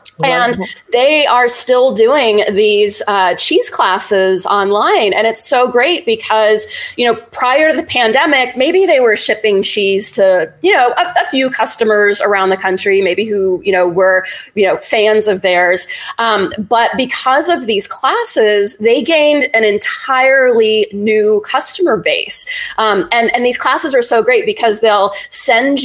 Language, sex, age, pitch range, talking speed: English, female, 30-49, 205-280 Hz, 160 wpm